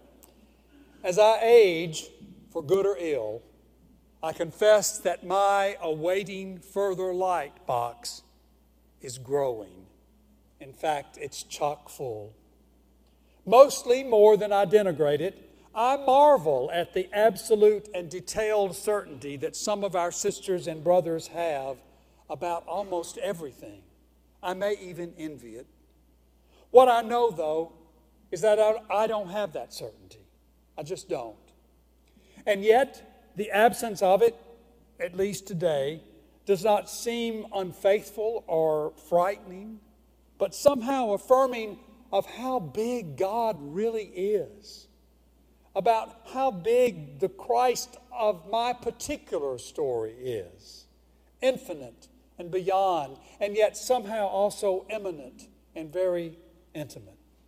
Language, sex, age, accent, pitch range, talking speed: English, male, 60-79, American, 160-225 Hz, 115 wpm